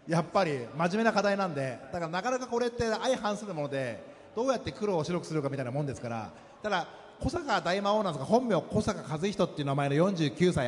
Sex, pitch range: male, 155-230 Hz